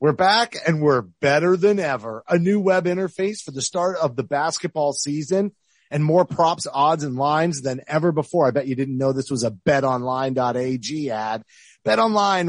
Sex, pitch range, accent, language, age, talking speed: male, 135-170 Hz, American, English, 30-49, 185 wpm